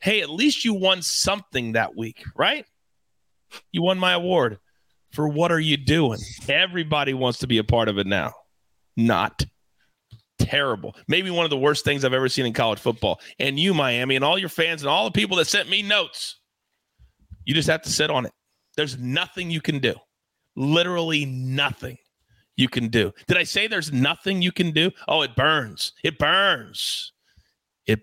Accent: American